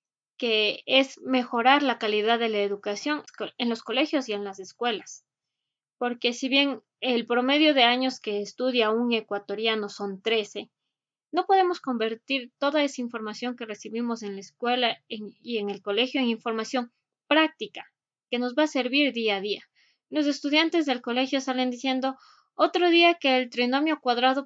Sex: female